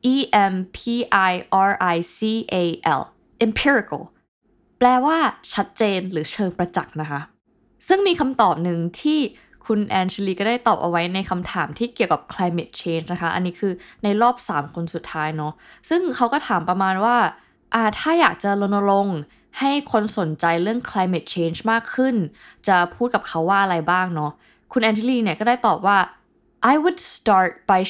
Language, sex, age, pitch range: Thai, female, 20-39, 175-235 Hz